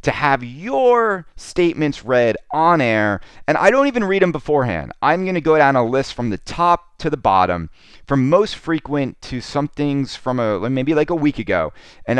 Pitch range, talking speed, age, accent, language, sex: 115-160 Hz, 200 wpm, 30-49, American, English, male